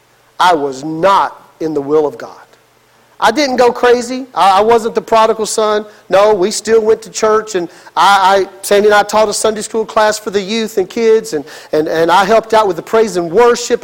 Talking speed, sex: 215 wpm, male